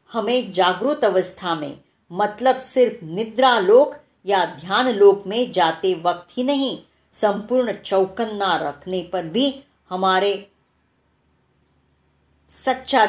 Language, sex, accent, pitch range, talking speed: Marathi, female, native, 180-250 Hz, 105 wpm